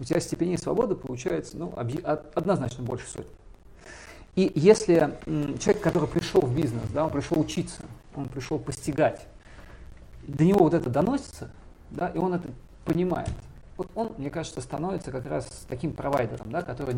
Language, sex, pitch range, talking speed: Russian, male, 115-155 Hz, 160 wpm